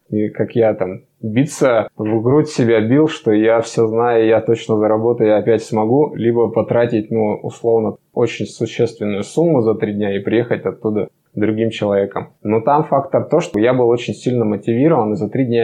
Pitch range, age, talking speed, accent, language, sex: 110-125 Hz, 20-39, 185 wpm, native, Russian, male